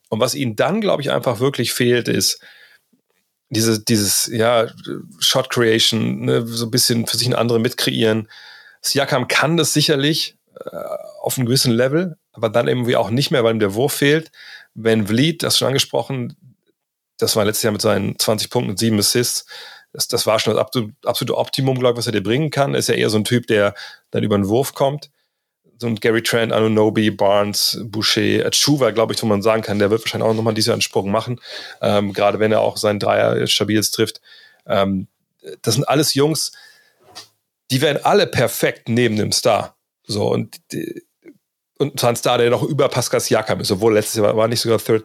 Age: 30-49